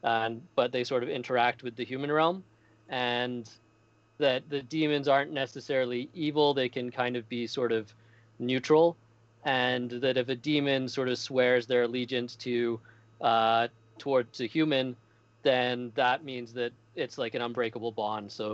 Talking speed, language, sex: 160 wpm, English, male